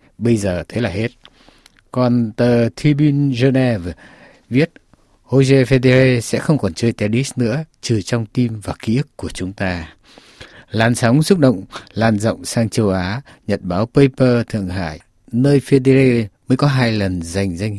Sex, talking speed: male, 165 wpm